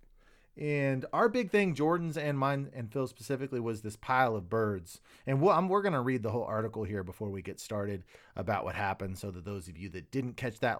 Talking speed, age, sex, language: 220 wpm, 30-49, male, English